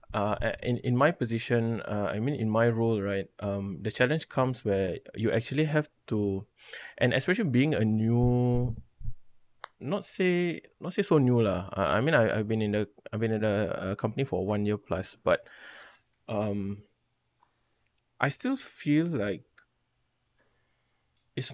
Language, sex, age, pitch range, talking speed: English, male, 20-39, 105-125 Hz, 165 wpm